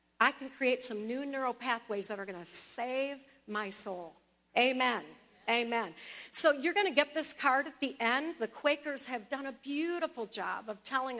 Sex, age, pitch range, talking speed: female, 50-69, 230-280 Hz, 190 wpm